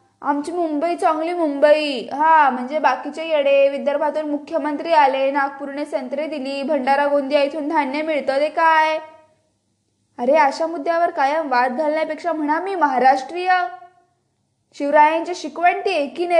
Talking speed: 115 wpm